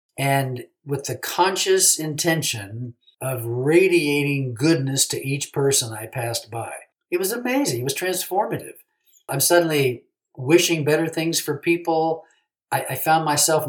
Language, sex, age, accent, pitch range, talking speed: English, male, 50-69, American, 125-150 Hz, 135 wpm